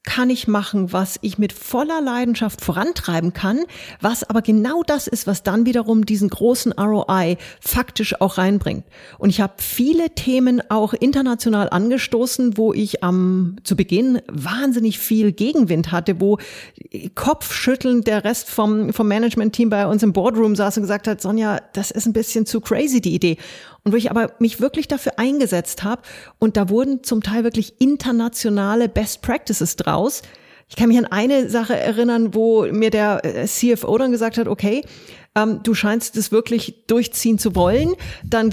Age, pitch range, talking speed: 30-49, 200-240 Hz, 170 wpm